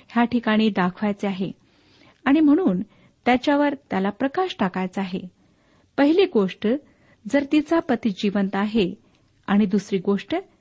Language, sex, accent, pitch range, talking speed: Marathi, female, native, 200-270 Hz, 120 wpm